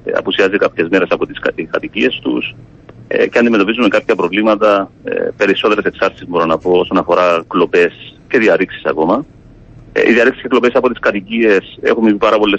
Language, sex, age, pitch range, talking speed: Greek, male, 40-59, 95-130 Hz, 170 wpm